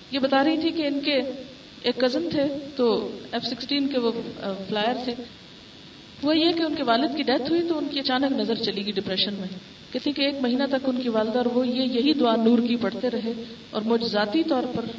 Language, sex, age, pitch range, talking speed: Urdu, female, 40-59, 230-275 Hz, 205 wpm